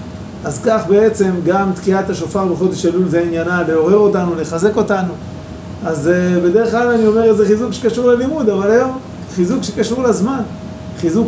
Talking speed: 155 wpm